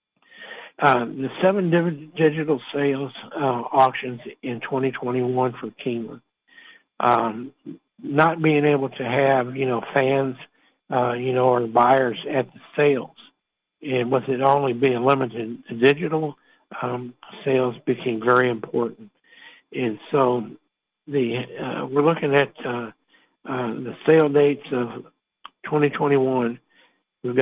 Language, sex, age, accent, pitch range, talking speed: English, male, 60-79, American, 125-145 Hz, 125 wpm